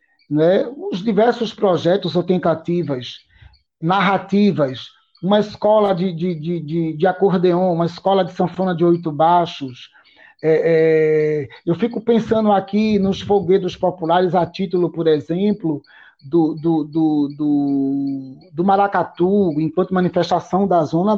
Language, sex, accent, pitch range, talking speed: Portuguese, male, Brazilian, 155-195 Hz, 105 wpm